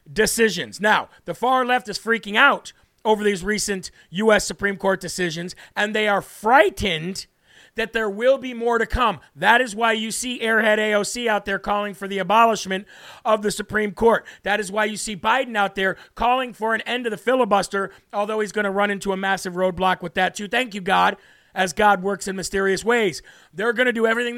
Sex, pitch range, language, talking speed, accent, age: male, 195-235 Hz, English, 205 wpm, American, 40-59